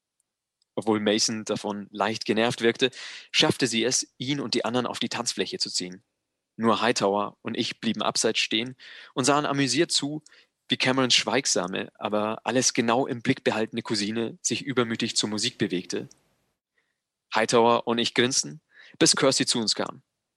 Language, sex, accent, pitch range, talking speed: English, male, German, 110-140 Hz, 155 wpm